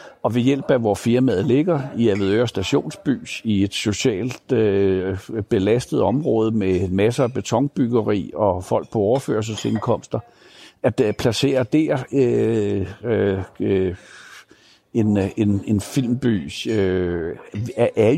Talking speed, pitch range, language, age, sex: 100 wpm, 100-125 Hz, Danish, 60-79, male